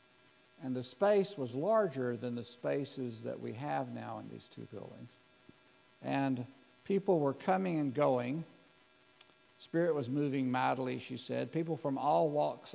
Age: 60-79